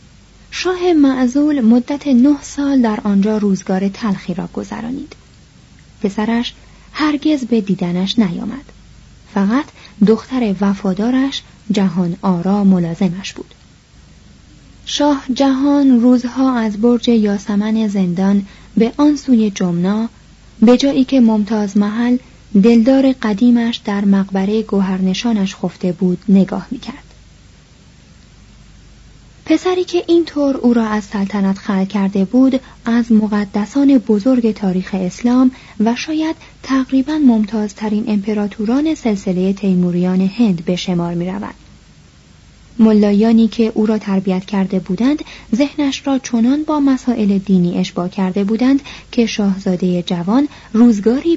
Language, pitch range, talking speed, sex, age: Persian, 195-255 Hz, 115 wpm, female, 30-49